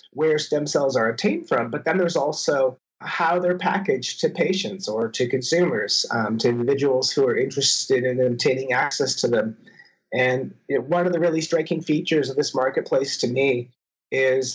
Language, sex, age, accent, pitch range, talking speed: English, male, 30-49, American, 130-165 Hz, 180 wpm